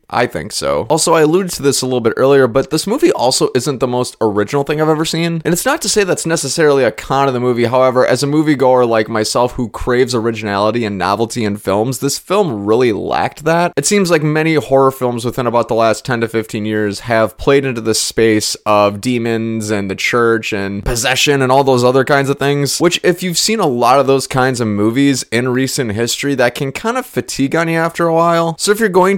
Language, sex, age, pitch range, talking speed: English, male, 20-39, 115-155 Hz, 235 wpm